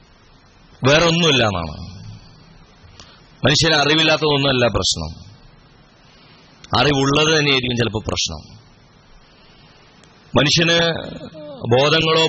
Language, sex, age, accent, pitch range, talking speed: Malayalam, male, 30-49, native, 115-165 Hz, 50 wpm